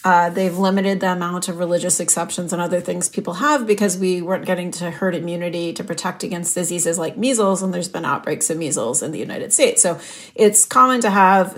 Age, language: 30-49, English